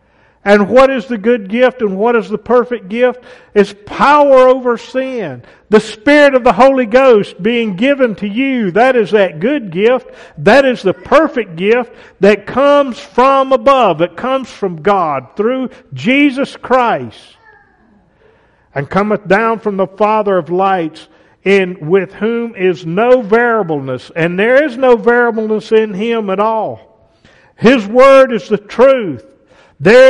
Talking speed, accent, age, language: 150 wpm, American, 50-69, English